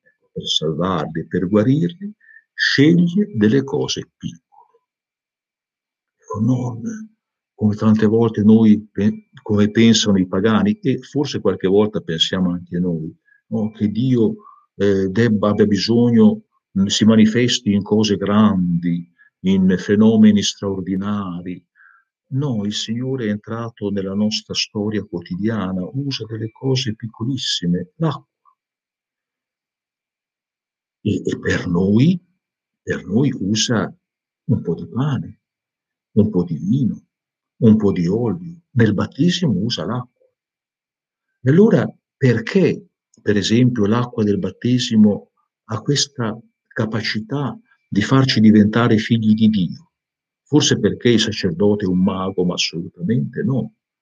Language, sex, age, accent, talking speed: Italian, male, 50-69, native, 115 wpm